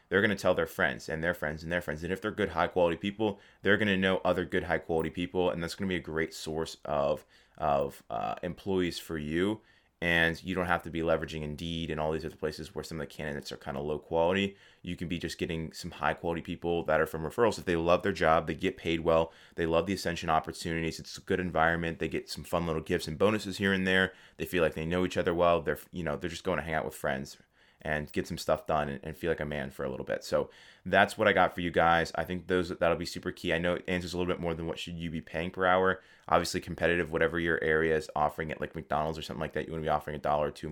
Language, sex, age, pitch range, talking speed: English, male, 20-39, 80-90 Hz, 285 wpm